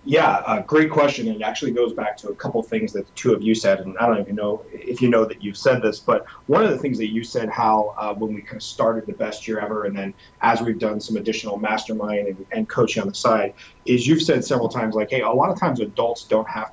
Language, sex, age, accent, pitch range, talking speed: English, male, 30-49, American, 110-130 Hz, 275 wpm